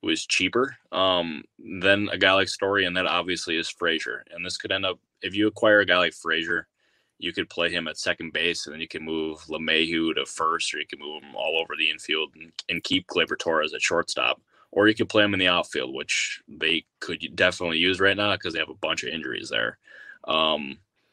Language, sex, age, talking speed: English, male, 10-29, 225 wpm